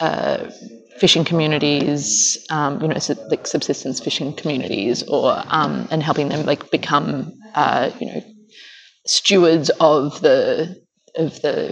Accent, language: Australian, English